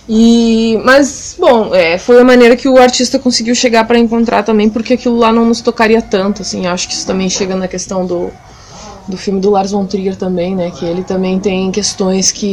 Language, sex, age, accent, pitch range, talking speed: Portuguese, female, 20-39, Brazilian, 200-245 Hz, 215 wpm